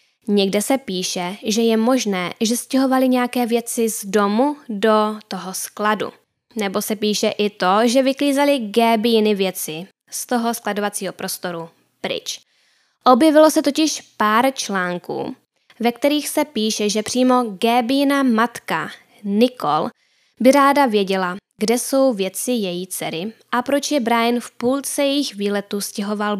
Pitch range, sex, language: 205-265 Hz, female, Czech